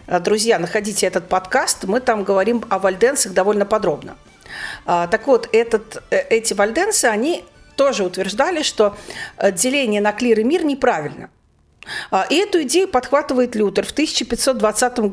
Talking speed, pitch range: 125 wpm, 195-270 Hz